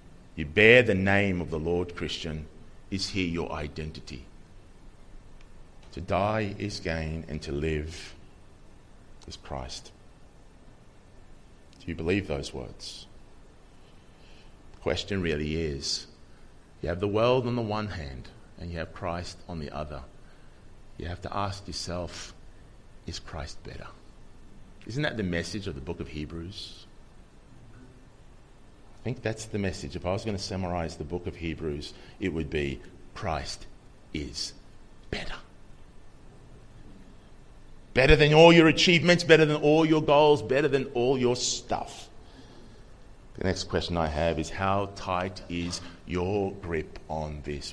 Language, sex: English, male